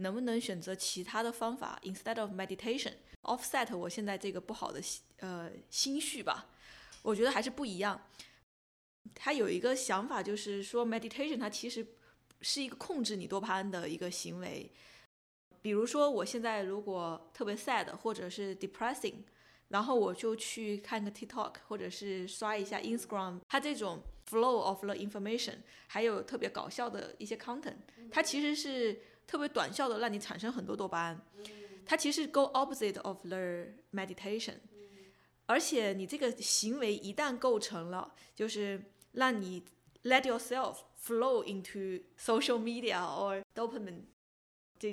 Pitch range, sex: 195-245 Hz, female